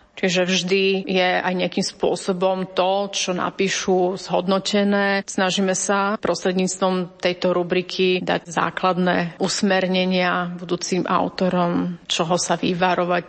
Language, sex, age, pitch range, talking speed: Slovak, female, 30-49, 180-200 Hz, 105 wpm